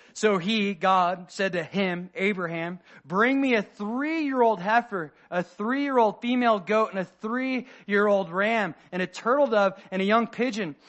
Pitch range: 200-255 Hz